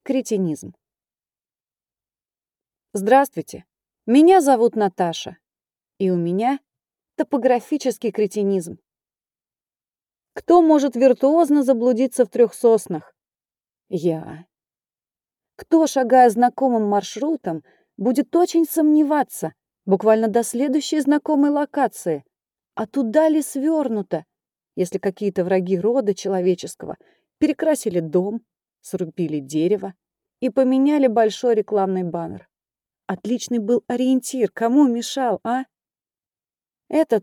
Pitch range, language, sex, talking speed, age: 190-270 Hz, Russian, female, 90 wpm, 30-49